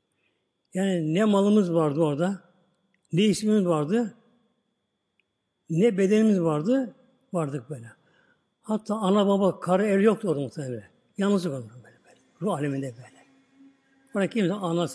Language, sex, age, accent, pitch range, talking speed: Turkish, male, 60-79, native, 165-215 Hz, 125 wpm